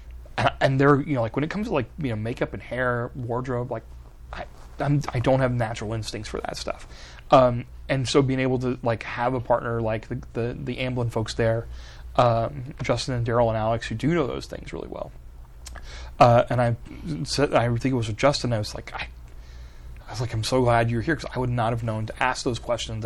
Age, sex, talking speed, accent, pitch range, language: 30-49, male, 230 wpm, American, 110-130 Hz, English